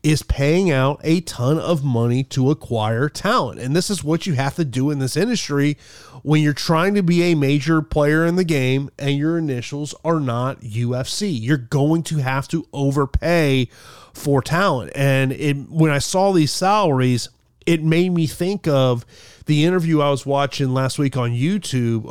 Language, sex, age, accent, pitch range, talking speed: English, male, 30-49, American, 125-155 Hz, 180 wpm